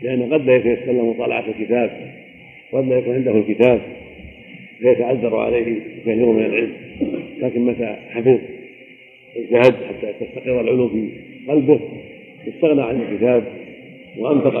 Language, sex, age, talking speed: Arabic, male, 50-69, 120 wpm